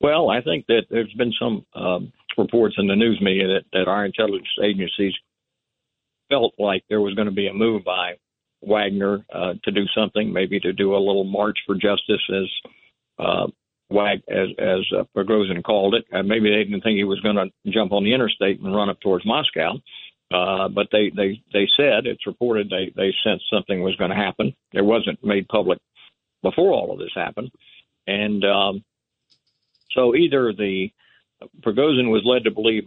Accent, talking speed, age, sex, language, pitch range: American, 185 wpm, 60-79, male, English, 95-110 Hz